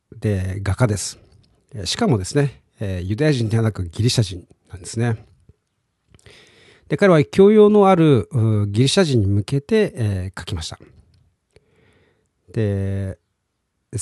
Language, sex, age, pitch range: Japanese, male, 40-59, 100-140 Hz